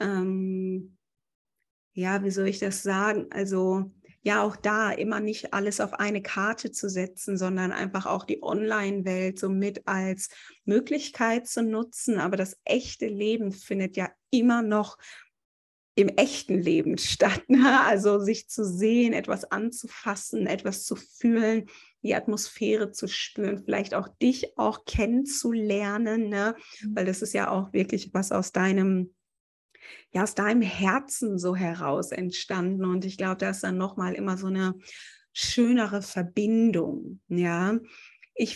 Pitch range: 190-220 Hz